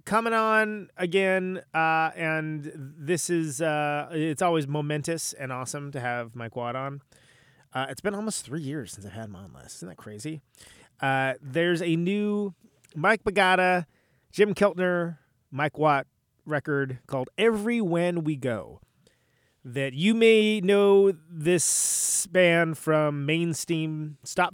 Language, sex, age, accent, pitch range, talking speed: English, male, 30-49, American, 125-170 Hz, 140 wpm